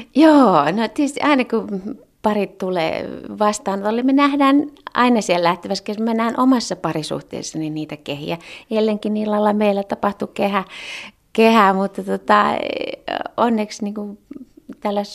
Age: 30-49